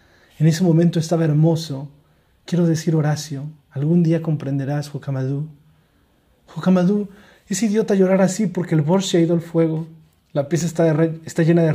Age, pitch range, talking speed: 30-49, 145-170 Hz, 165 wpm